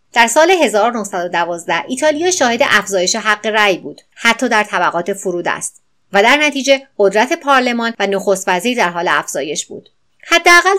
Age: 30-49